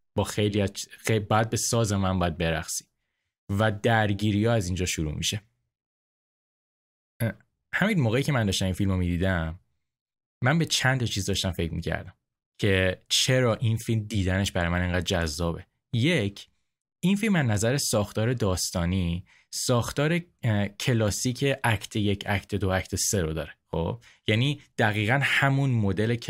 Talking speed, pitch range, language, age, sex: 140 wpm, 95-115 Hz, Persian, 20-39, male